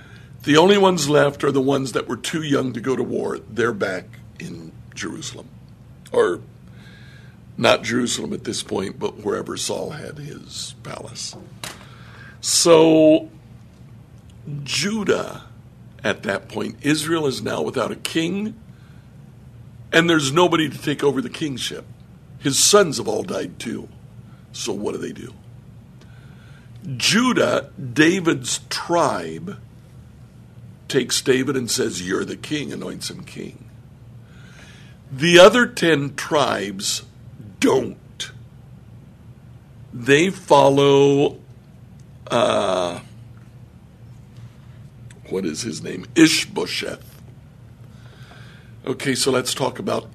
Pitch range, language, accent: 120-150 Hz, English, American